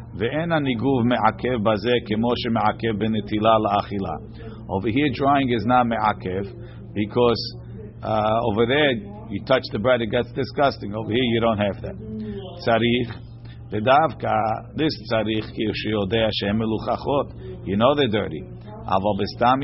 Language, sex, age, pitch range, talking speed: English, male, 50-69, 105-125 Hz, 85 wpm